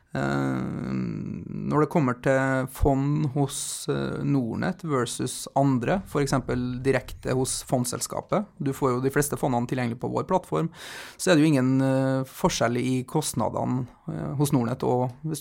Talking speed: 140 wpm